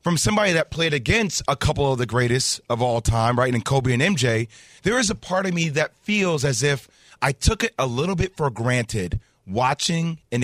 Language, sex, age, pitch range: English, male, 30-49, 125-175 Hz